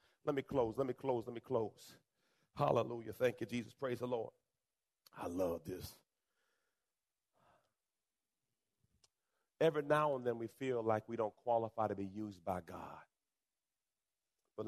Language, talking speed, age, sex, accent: English, 145 wpm, 40-59, male, American